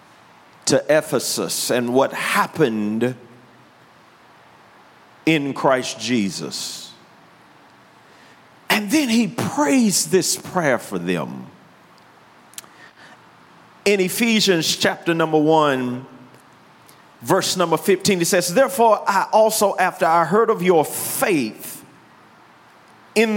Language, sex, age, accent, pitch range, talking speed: English, male, 40-59, American, 130-190 Hz, 90 wpm